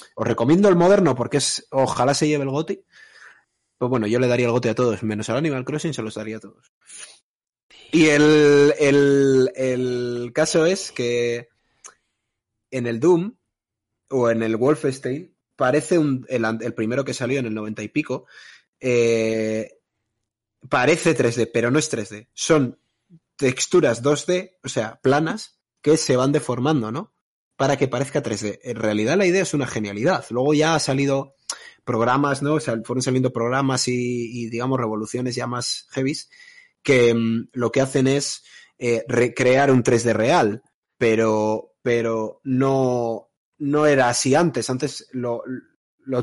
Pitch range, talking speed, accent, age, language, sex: 115-150 Hz, 160 wpm, Spanish, 20-39, Spanish, male